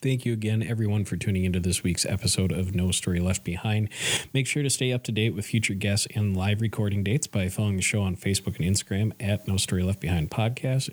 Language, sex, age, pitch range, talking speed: English, male, 40-59, 100-125 Hz, 235 wpm